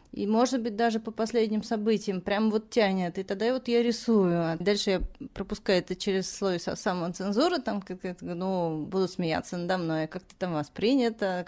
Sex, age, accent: female, 30-49, native